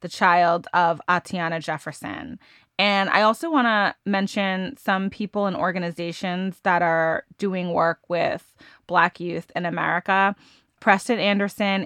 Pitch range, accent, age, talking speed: 175-210 Hz, American, 20-39, 130 wpm